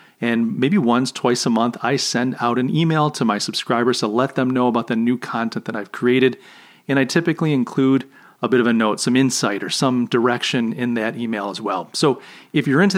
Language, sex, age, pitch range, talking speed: English, male, 40-59, 120-165 Hz, 220 wpm